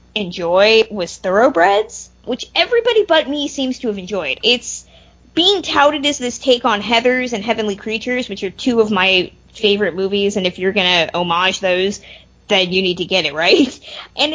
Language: English